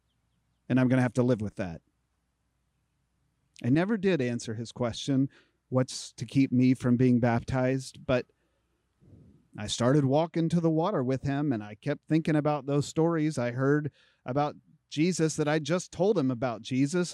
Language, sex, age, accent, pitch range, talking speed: English, male, 40-59, American, 115-145 Hz, 170 wpm